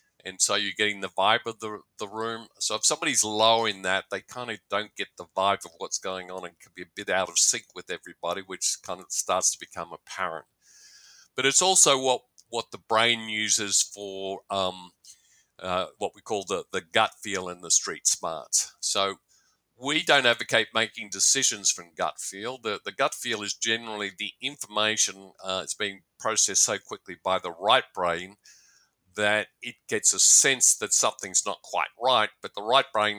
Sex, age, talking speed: male, 50-69, 195 wpm